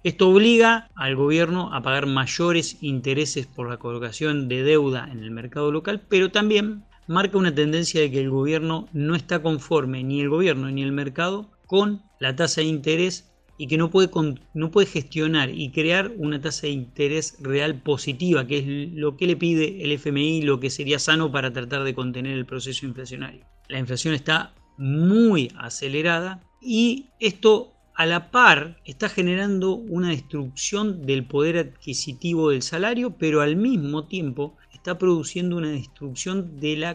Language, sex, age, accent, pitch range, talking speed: Spanish, male, 30-49, Argentinian, 140-180 Hz, 165 wpm